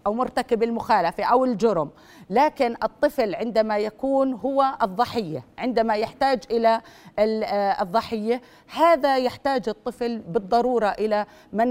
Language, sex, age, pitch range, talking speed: Arabic, female, 40-59, 200-245 Hz, 110 wpm